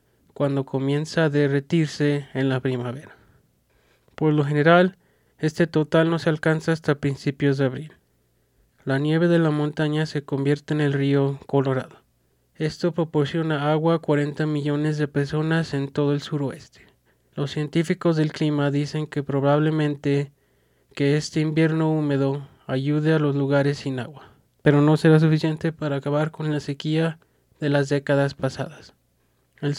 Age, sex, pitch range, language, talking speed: 20-39, male, 140-160 Hz, English, 145 wpm